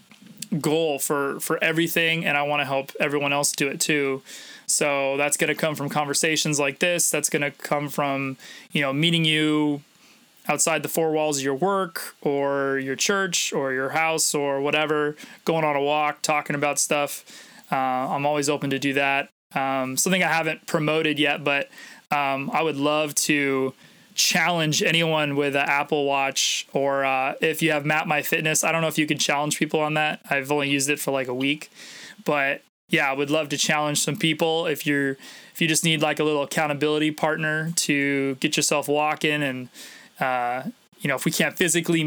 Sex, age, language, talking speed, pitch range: male, 20-39, English, 195 wpm, 140-160 Hz